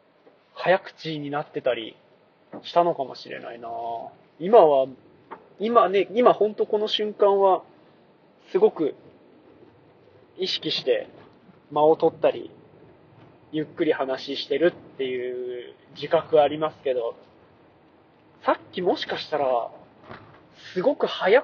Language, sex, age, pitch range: Japanese, male, 20-39, 140-185 Hz